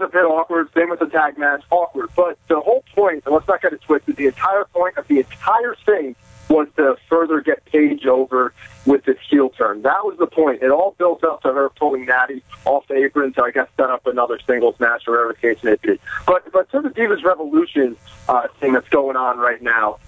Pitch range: 135-185 Hz